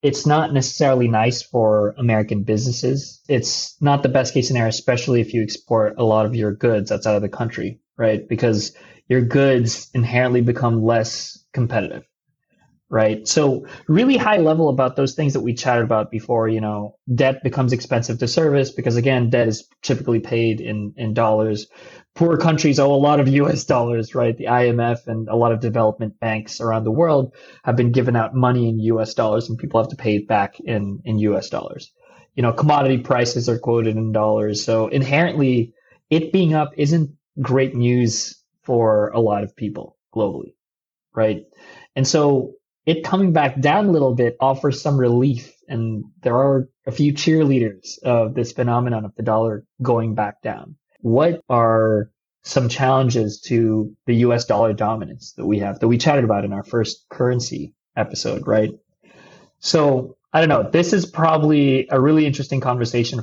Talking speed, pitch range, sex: 175 wpm, 110-140 Hz, male